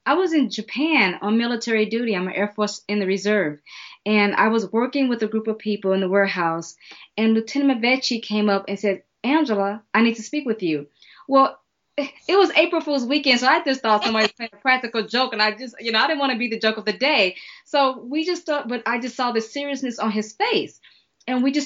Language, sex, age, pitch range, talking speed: English, female, 20-39, 200-245 Hz, 240 wpm